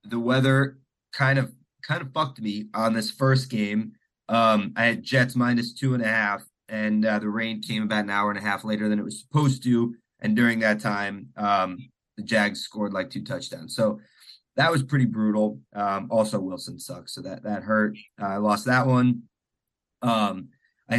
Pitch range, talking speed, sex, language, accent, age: 105-120 Hz, 195 wpm, male, English, American, 20-39